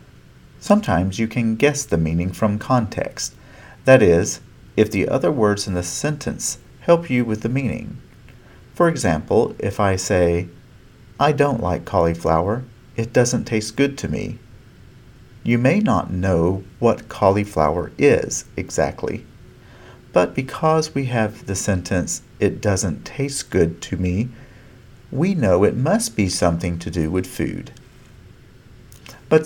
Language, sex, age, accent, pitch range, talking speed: English, male, 50-69, American, 90-130 Hz, 140 wpm